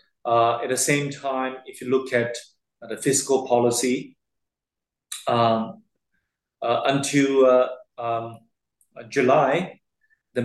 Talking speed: 115 wpm